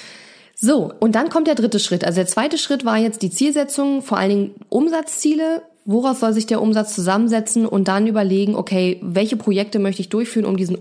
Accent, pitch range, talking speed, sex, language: German, 190-230 Hz, 200 wpm, female, German